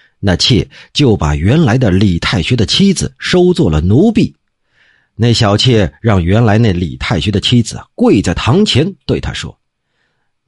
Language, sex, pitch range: Chinese, male, 105-170 Hz